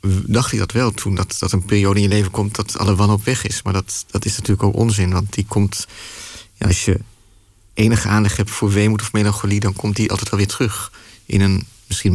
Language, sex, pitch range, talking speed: Dutch, male, 100-110 Hz, 235 wpm